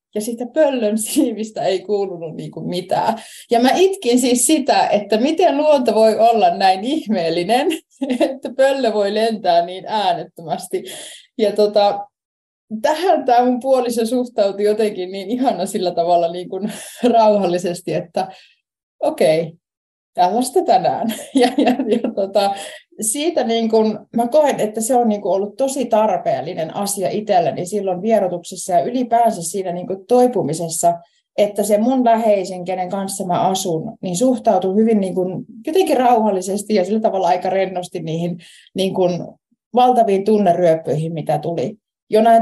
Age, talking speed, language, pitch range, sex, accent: 20-39, 130 wpm, Finnish, 175-235 Hz, female, native